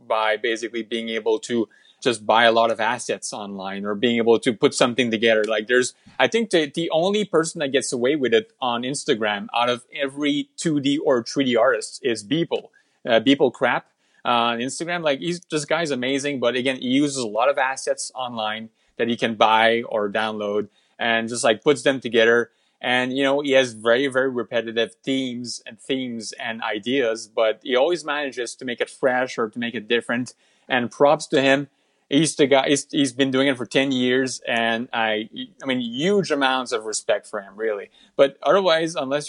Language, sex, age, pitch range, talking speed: English, male, 30-49, 115-165 Hz, 200 wpm